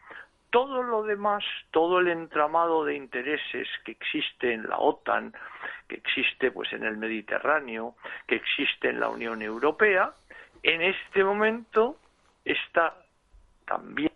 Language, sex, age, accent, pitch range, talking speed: Spanish, male, 60-79, Spanish, 135-215 Hz, 125 wpm